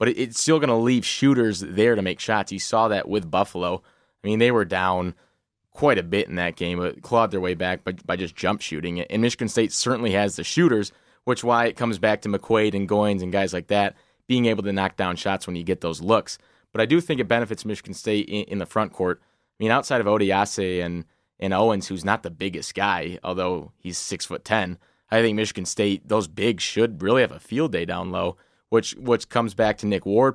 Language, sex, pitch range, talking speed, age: English, male, 95-115 Hz, 240 wpm, 20-39